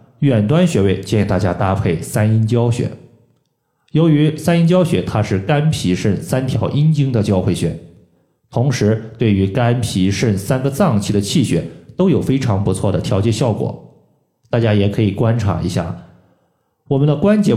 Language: Chinese